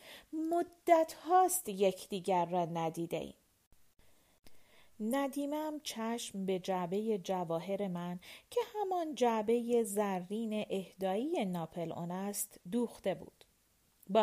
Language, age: Persian, 40-59